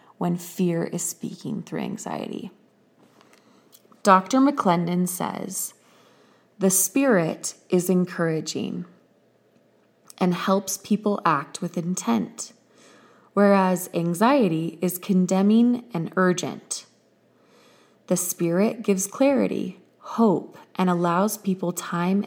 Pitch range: 175-200 Hz